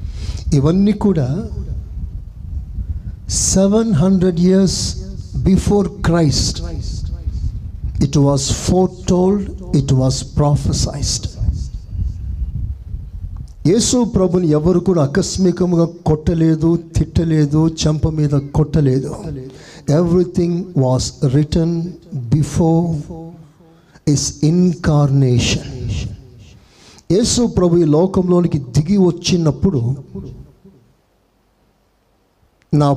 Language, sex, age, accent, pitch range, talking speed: Telugu, male, 60-79, native, 105-175 Hz, 65 wpm